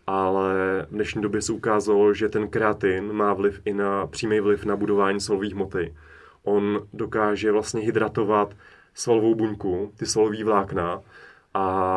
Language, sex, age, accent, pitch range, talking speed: Czech, male, 20-39, native, 100-110 Hz, 145 wpm